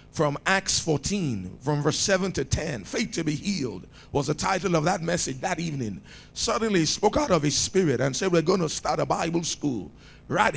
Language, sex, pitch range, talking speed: English, male, 145-200 Hz, 210 wpm